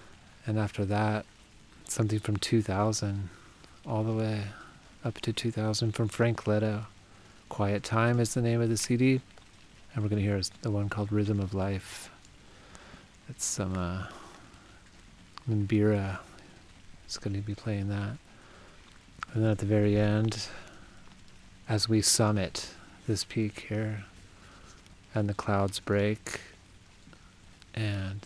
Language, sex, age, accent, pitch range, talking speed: English, male, 30-49, American, 95-110 Hz, 130 wpm